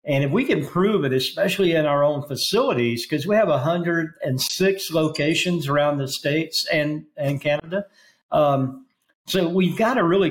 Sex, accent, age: male, American, 50-69